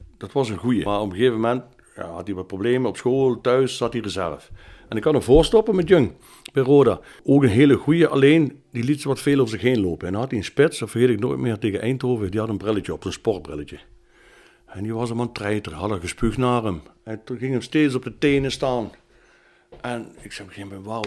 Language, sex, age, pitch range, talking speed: Dutch, male, 60-79, 110-150 Hz, 260 wpm